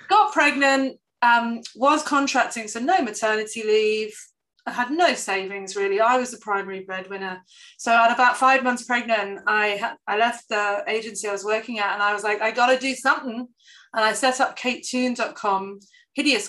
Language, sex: English, female